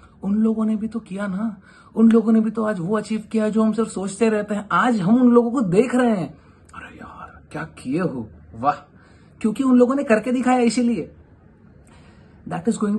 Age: 30-49